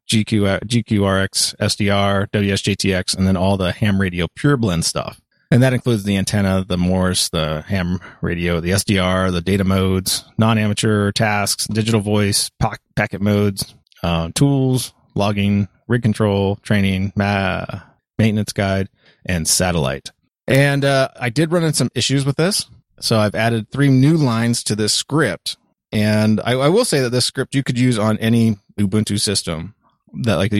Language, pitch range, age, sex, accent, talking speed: English, 90-110 Hz, 30-49, male, American, 155 wpm